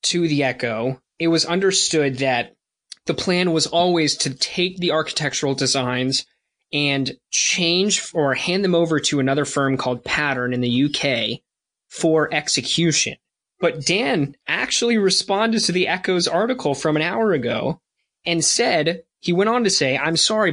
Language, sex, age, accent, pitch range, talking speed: English, male, 20-39, American, 135-170 Hz, 155 wpm